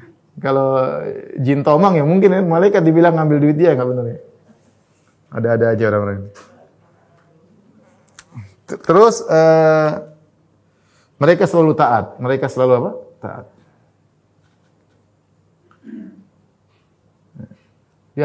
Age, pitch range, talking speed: 30-49, 120-160 Hz, 90 wpm